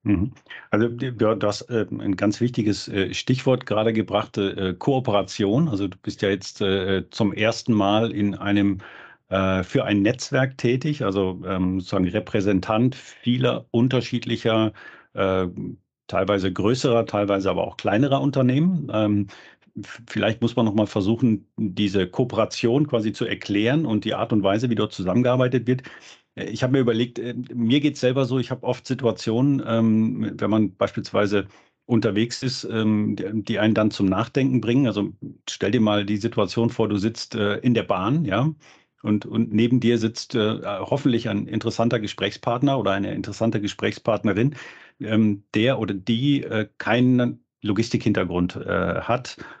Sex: male